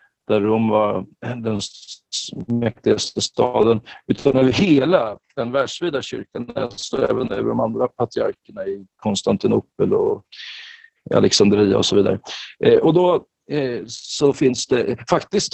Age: 50-69